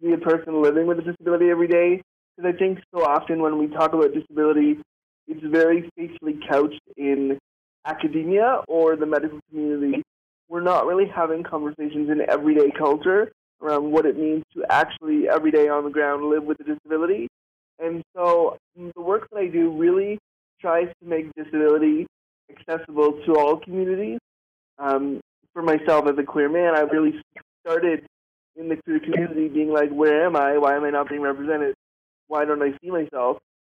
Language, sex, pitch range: English, male, 150-170 Hz